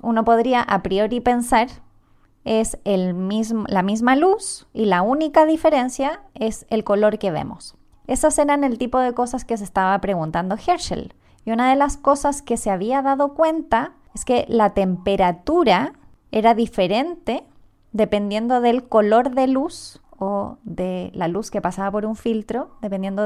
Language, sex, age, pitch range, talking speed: Spanish, female, 20-39, 205-270 Hz, 155 wpm